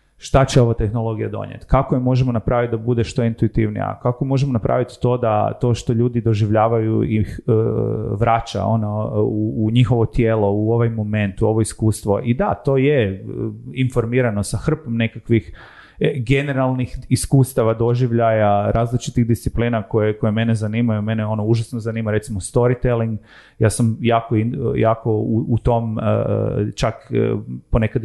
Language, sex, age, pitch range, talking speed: Croatian, male, 30-49, 110-130 Hz, 145 wpm